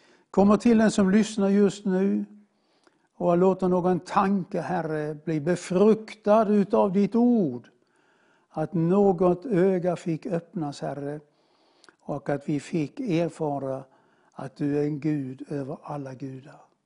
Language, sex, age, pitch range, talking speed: English, male, 60-79, 165-210 Hz, 130 wpm